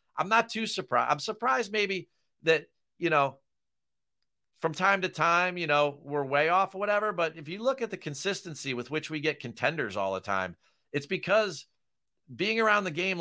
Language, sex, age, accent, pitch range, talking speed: English, male, 40-59, American, 130-180 Hz, 190 wpm